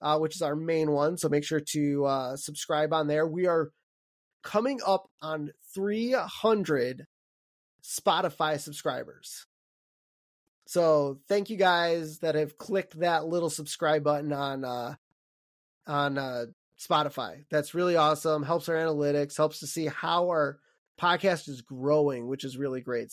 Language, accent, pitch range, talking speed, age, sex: English, American, 145-170 Hz, 145 wpm, 20-39, male